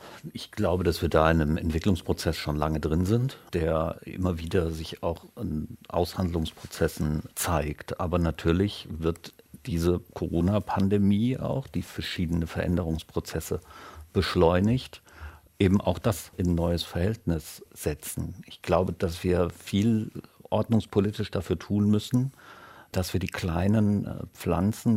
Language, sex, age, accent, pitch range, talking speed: German, male, 50-69, German, 85-100 Hz, 125 wpm